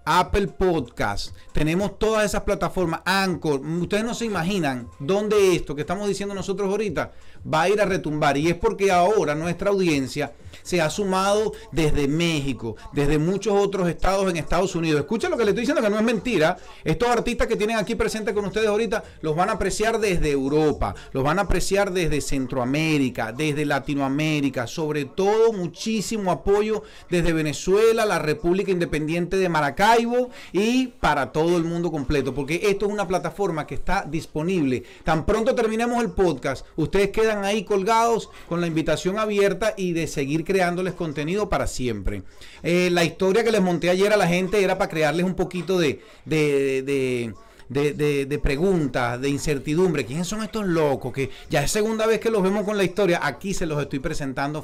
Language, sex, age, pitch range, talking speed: Spanish, male, 40-59, 150-205 Hz, 175 wpm